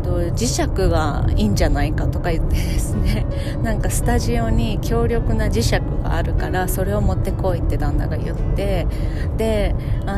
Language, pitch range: Japanese, 95-115 Hz